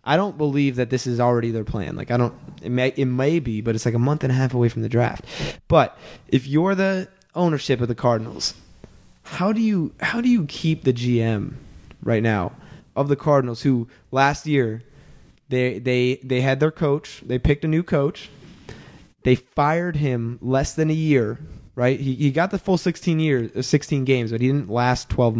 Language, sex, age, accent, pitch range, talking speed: English, male, 20-39, American, 120-150 Hz, 205 wpm